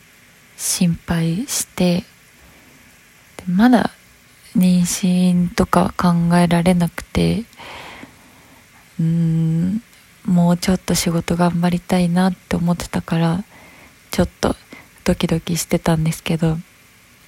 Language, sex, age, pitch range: Japanese, female, 20-39, 170-200 Hz